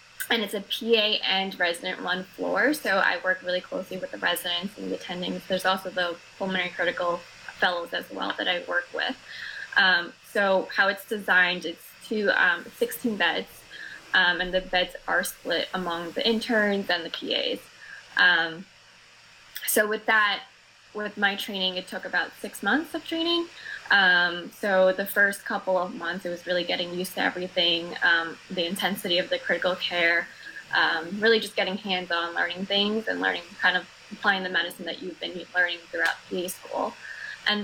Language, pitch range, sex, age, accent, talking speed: English, 180-210 Hz, female, 10-29, American, 175 wpm